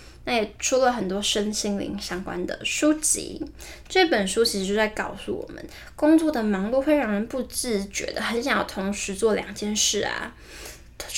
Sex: female